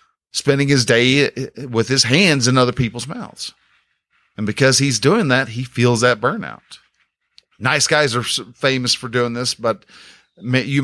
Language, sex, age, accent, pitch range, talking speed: English, male, 40-59, American, 115-155 Hz, 155 wpm